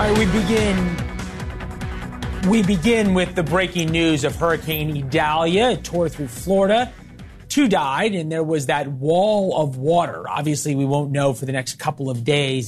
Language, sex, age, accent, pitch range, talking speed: English, male, 30-49, American, 140-175 Hz, 170 wpm